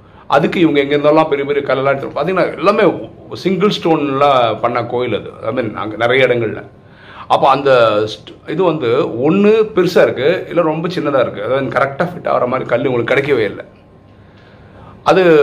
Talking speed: 150 wpm